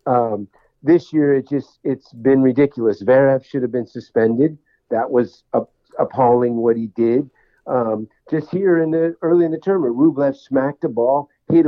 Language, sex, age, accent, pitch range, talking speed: English, male, 50-69, American, 125-150 Hz, 170 wpm